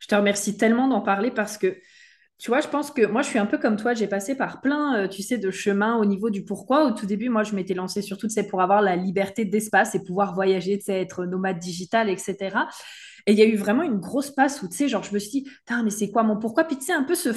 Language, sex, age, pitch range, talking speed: French, female, 20-39, 205-270 Hz, 290 wpm